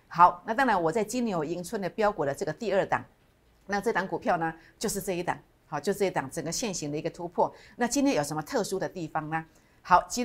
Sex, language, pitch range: female, Chinese, 175-240 Hz